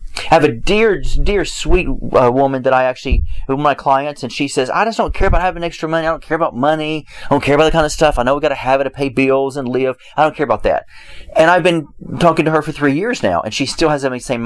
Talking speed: 295 wpm